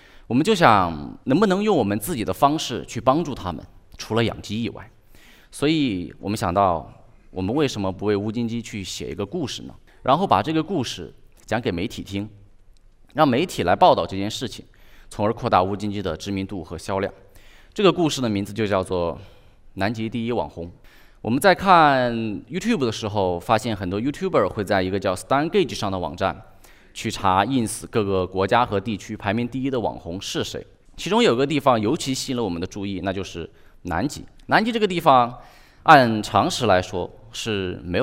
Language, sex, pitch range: Chinese, male, 90-120 Hz